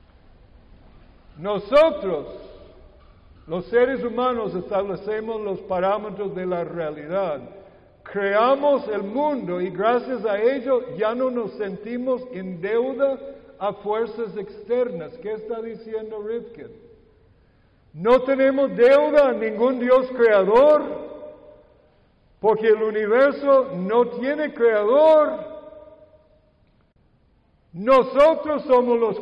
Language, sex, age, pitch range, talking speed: English, male, 60-79, 200-275 Hz, 95 wpm